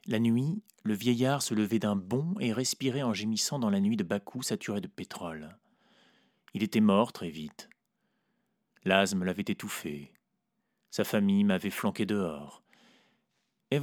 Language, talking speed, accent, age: French, 150 wpm, French, 30-49